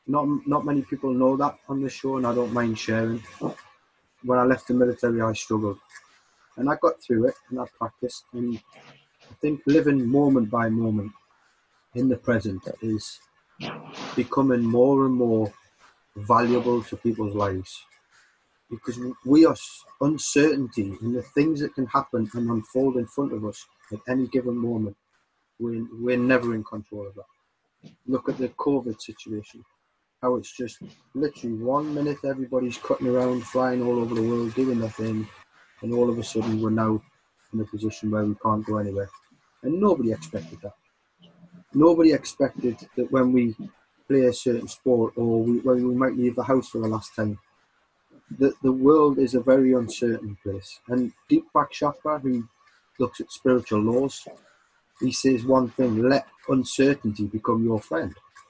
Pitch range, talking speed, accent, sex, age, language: 110-135 Hz, 165 wpm, British, male, 30-49, English